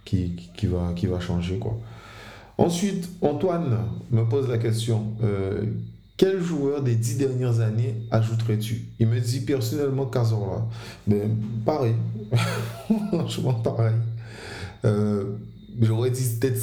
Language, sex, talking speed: French, male, 125 wpm